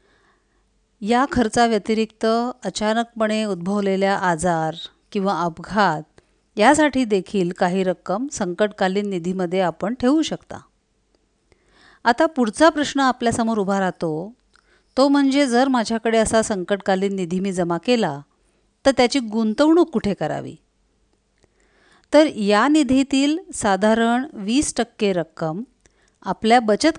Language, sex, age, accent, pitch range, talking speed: Marathi, female, 50-69, native, 195-265 Hz, 105 wpm